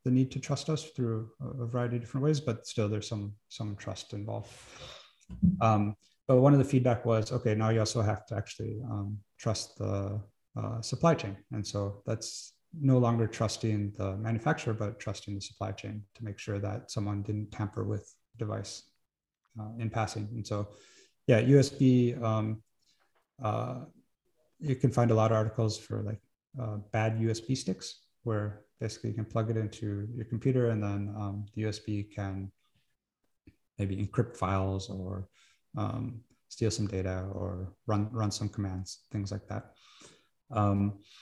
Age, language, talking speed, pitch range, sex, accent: 30-49, English, 165 wpm, 105-120 Hz, male, American